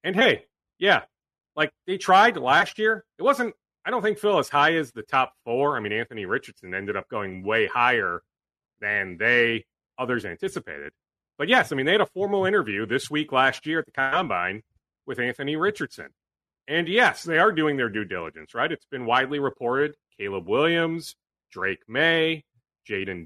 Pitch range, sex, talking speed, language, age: 125-170 Hz, male, 180 wpm, English, 30-49